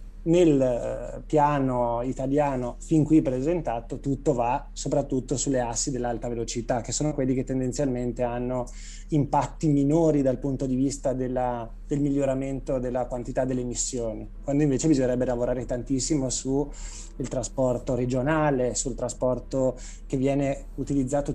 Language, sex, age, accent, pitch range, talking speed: Italian, male, 20-39, native, 125-145 Hz, 125 wpm